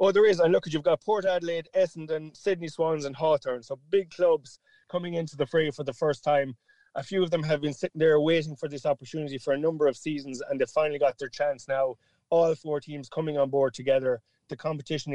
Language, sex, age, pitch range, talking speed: English, male, 20-39, 135-155 Hz, 235 wpm